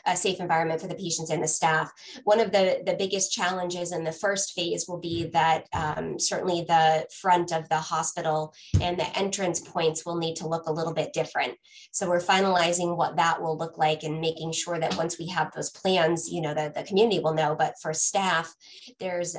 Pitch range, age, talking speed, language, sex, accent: 160-180 Hz, 20-39, 215 wpm, English, female, American